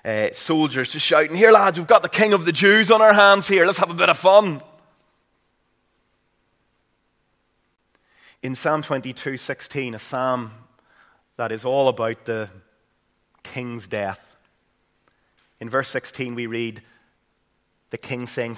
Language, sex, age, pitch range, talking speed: English, male, 30-49, 115-150 Hz, 140 wpm